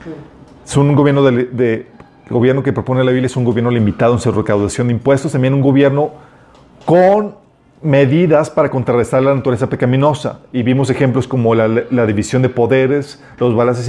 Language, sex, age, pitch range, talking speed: Spanish, male, 40-59, 115-140 Hz, 175 wpm